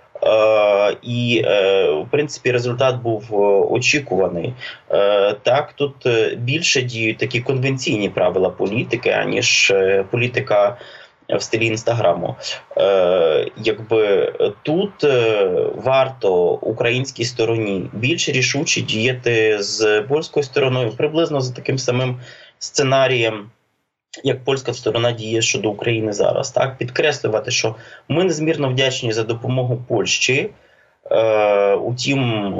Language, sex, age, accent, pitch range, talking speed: Ukrainian, male, 20-39, native, 110-145 Hz, 95 wpm